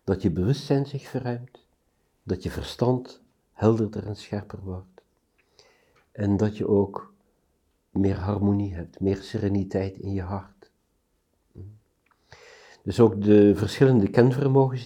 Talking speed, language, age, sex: 115 wpm, Dutch, 50-69, male